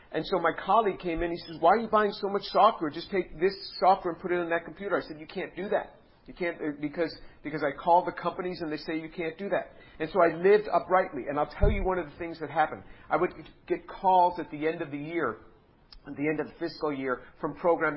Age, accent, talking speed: 50-69, American, 265 wpm